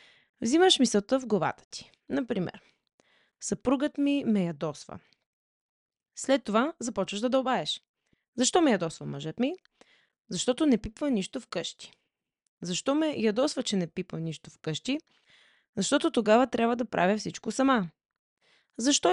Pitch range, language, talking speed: 180-265 Hz, Bulgarian, 135 wpm